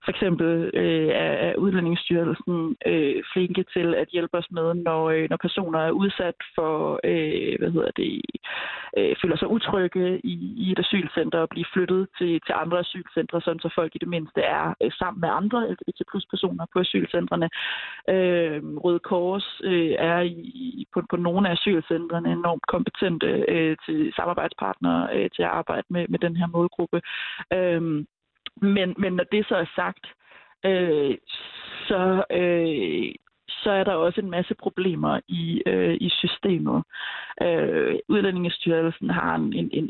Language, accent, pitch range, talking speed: Danish, native, 165-190 Hz, 155 wpm